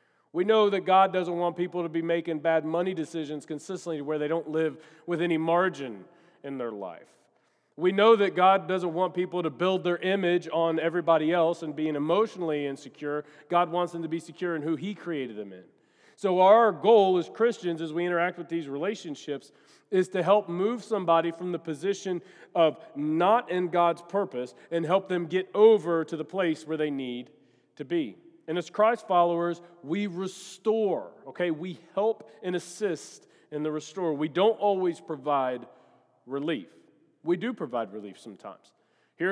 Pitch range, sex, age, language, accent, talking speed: 155-185 Hz, male, 40-59, English, American, 175 wpm